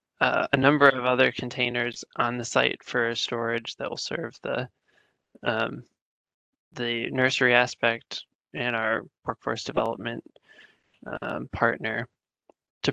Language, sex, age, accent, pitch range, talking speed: English, male, 20-39, American, 115-130 Hz, 120 wpm